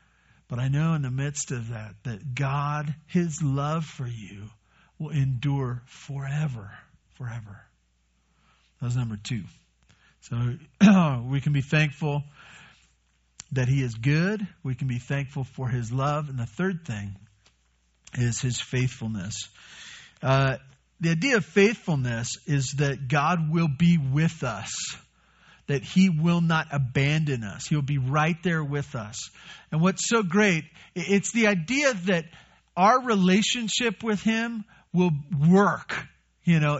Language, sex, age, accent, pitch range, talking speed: English, male, 50-69, American, 125-175 Hz, 140 wpm